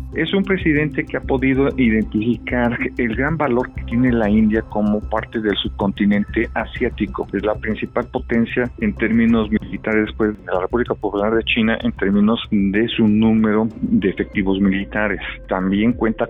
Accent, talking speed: Mexican, 160 wpm